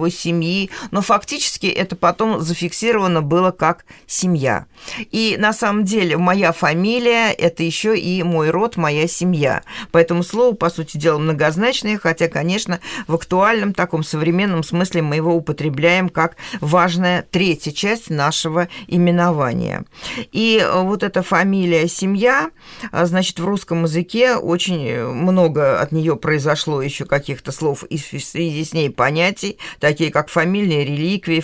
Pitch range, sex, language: 160-200 Hz, female, Russian